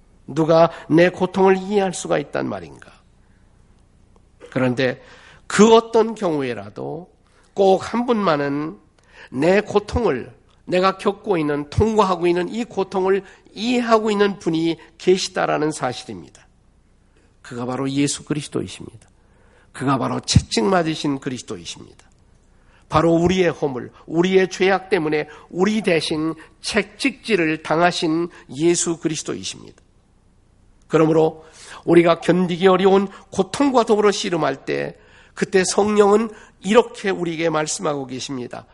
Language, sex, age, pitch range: Korean, male, 50-69, 135-190 Hz